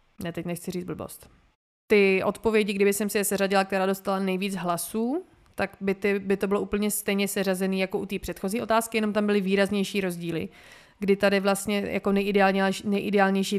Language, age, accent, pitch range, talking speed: Czech, 20-39, native, 185-205 Hz, 175 wpm